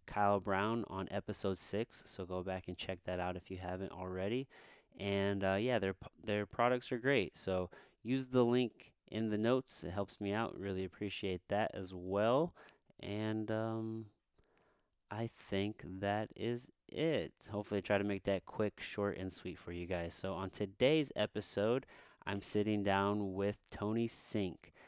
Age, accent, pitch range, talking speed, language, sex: 30-49, American, 95-110 Hz, 165 wpm, English, male